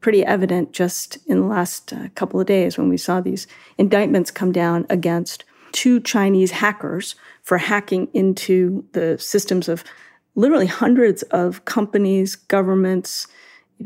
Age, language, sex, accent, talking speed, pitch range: 40-59, English, female, American, 145 wpm, 180-215 Hz